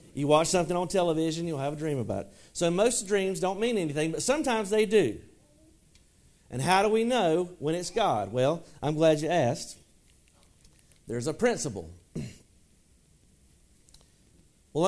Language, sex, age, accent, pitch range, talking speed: English, male, 40-59, American, 120-170 Hz, 155 wpm